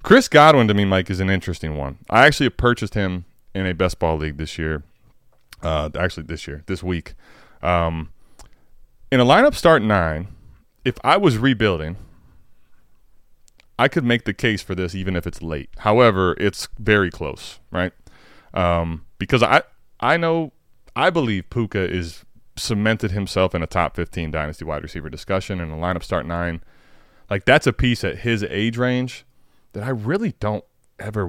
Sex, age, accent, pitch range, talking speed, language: male, 20-39, American, 85-110 Hz, 170 wpm, English